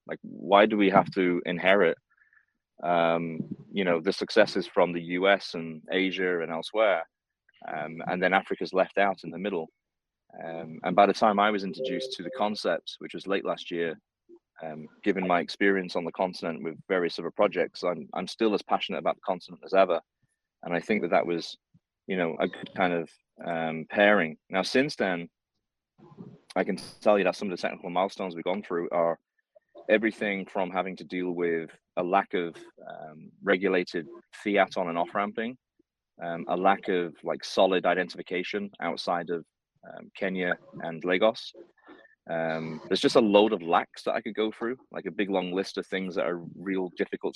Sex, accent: male, British